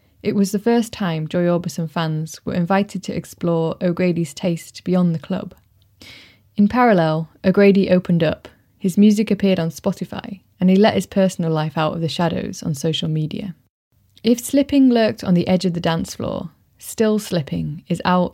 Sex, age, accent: female, 20-39, British